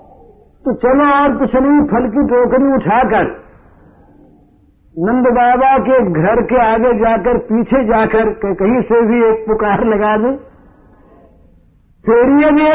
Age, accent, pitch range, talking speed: 60-79, native, 175-245 Hz, 120 wpm